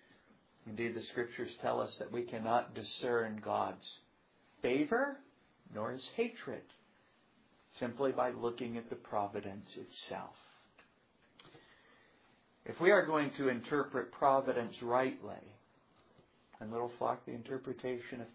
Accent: American